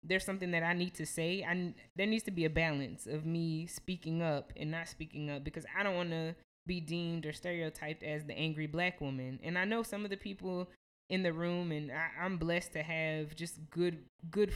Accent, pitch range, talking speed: American, 150-175 Hz, 225 wpm